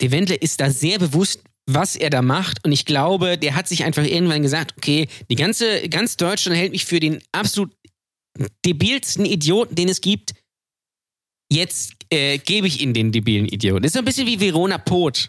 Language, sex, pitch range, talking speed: German, male, 140-180 Hz, 195 wpm